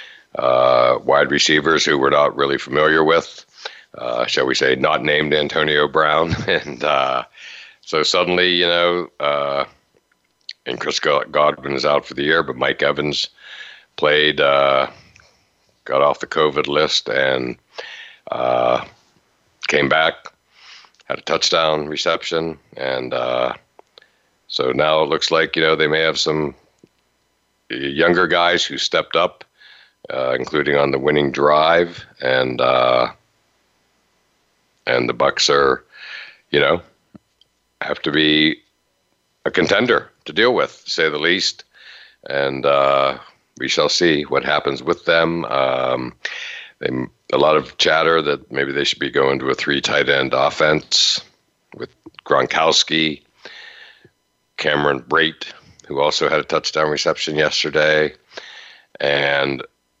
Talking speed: 135 wpm